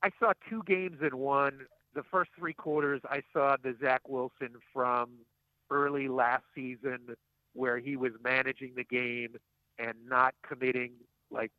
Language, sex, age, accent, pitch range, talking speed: English, male, 50-69, American, 120-145 Hz, 150 wpm